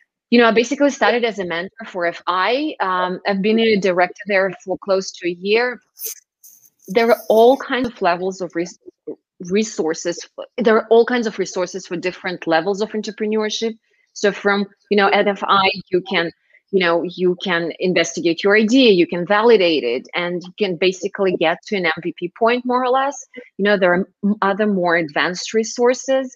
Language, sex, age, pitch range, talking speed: English, female, 30-49, 175-225 Hz, 180 wpm